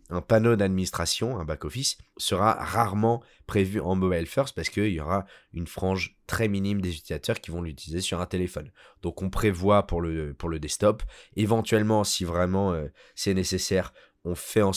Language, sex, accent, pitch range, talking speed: French, male, French, 90-105 Hz, 180 wpm